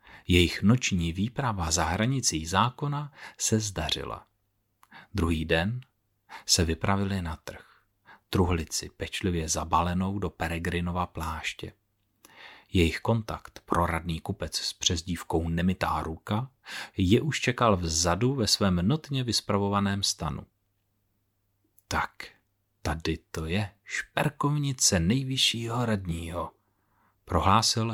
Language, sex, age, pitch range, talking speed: Czech, male, 40-59, 90-110 Hz, 95 wpm